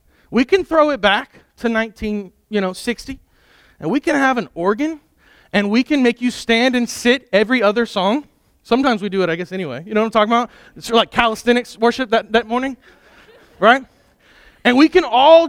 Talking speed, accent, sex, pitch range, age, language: 200 wpm, American, male, 210-260 Hz, 30-49, English